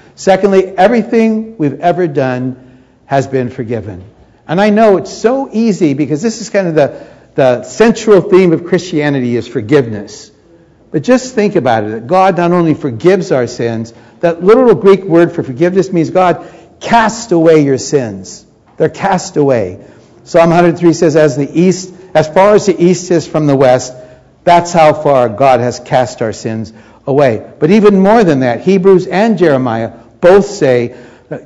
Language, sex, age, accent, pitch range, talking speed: English, male, 60-79, American, 125-175 Hz, 170 wpm